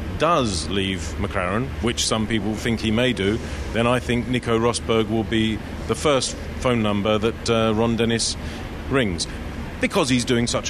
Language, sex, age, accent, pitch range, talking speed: English, male, 40-59, British, 105-135 Hz, 170 wpm